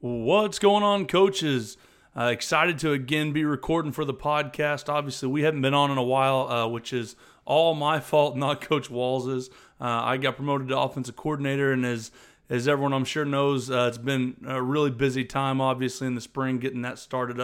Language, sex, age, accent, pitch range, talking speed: English, male, 30-49, American, 125-145 Hz, 200 wpm